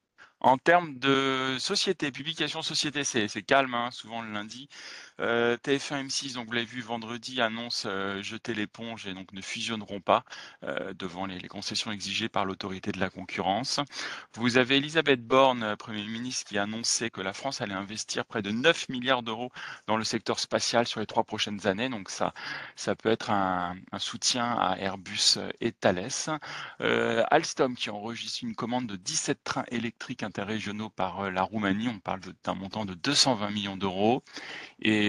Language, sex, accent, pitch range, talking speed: French, male, French, 100-125 Hz, 180 wpm